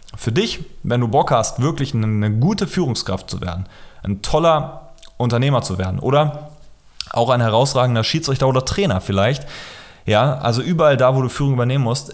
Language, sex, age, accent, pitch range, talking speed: German, male, 30-49, German, 110-140 Hz, 170 wpm